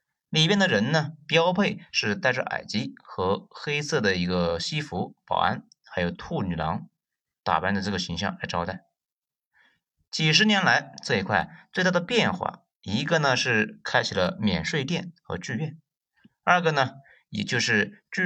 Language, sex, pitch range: Chinese, male, 130-195 Hz